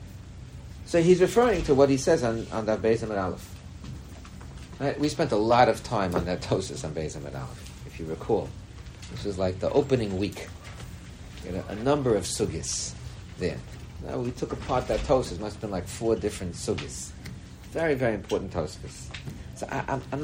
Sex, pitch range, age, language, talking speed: male, 95-140 Hz, 60-79, English, 195 wpm